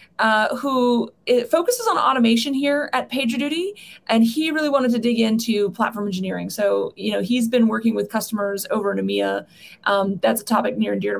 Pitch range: 210-265 Hz